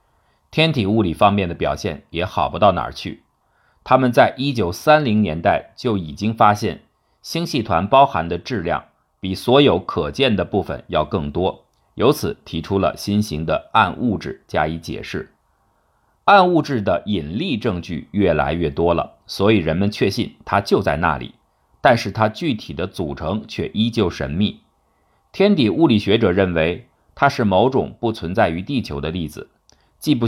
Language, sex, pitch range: Chinese, male, 85-125 Hz